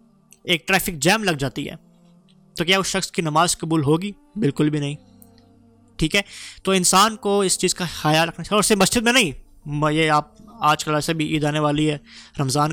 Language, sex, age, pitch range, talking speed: Urdu, male, 20-39, 155-195 Hz, 205 wpm